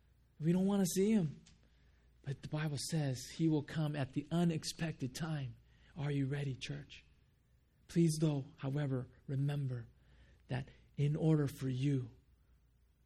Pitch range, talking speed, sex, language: 125-160 Hz, 140 wpm, male, English